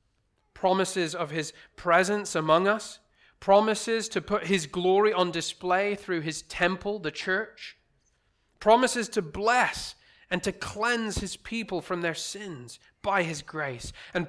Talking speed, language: 140 wpm, English